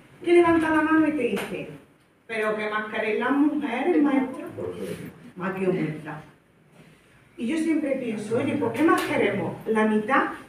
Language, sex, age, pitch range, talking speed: Spanish, female, 40-59, 210-280 Hz, 160 wpm